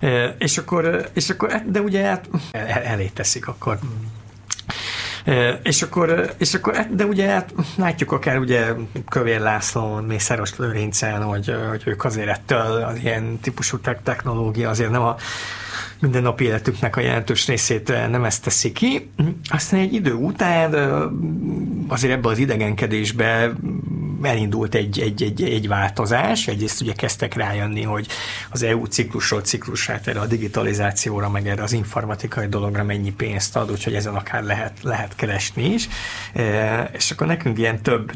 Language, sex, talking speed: Hungarian, male, 145 wpm